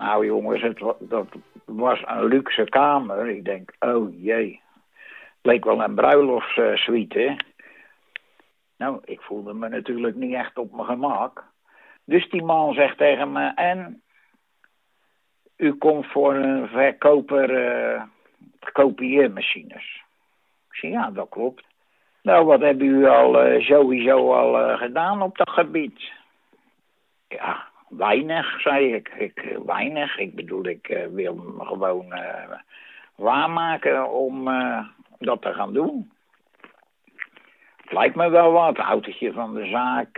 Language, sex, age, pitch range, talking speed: Dutch, male, 60-79, 125-170 Hz, 135 wpm